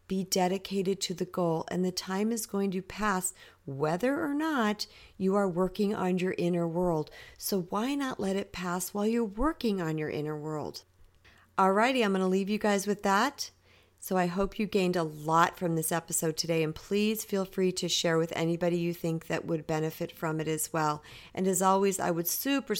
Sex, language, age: female, English, 50-69